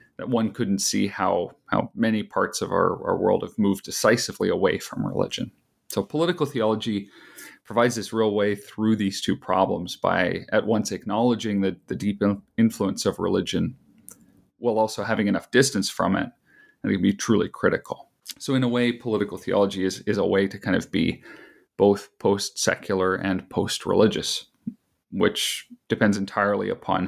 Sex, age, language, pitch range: male, 40-59, English, 95-120 Hz